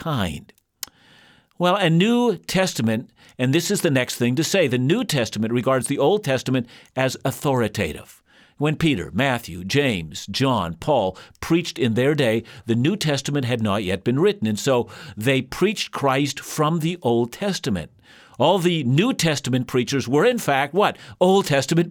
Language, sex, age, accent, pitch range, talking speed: English, male, 50-69, American, 125-175 Hz, 160 wpm